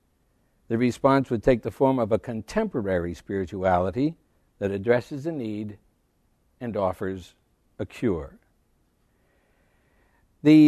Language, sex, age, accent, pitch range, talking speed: English, male, 60-79, American, 100-140 Hz, 105 wpm